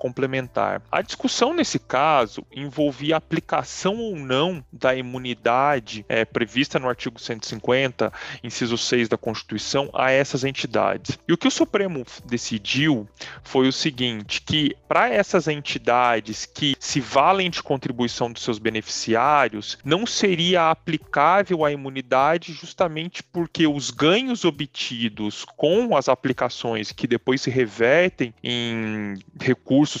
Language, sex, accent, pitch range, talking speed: Portuguese, male, Brazilian, 115-155 Hz, 125 wpm